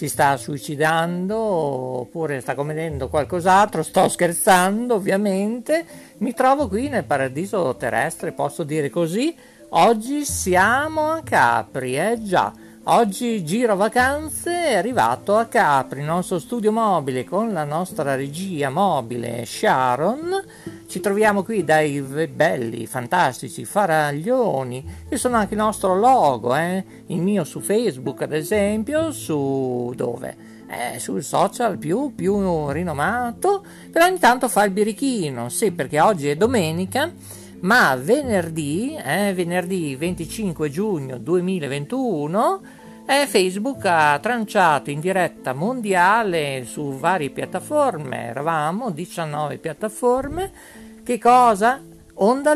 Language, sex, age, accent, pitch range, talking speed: English, male, 50-69, Italian, 150-225 Hz, 120 wpm